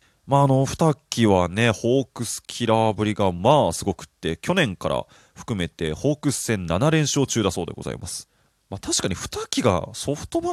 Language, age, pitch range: Japanese, 20-39, 95-140 Hz